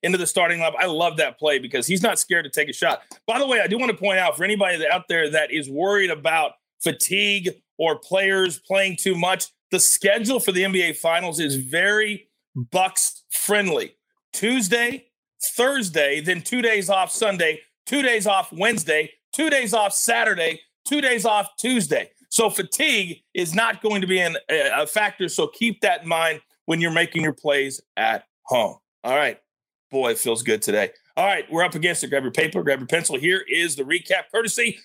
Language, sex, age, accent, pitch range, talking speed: English, male, 40-59, American, 175-230 Hz, 195 wpm